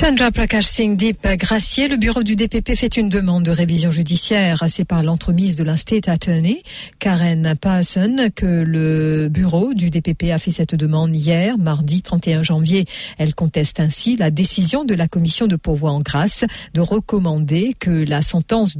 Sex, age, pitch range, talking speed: female, 50-69, 160-200 Hz, 170 wpm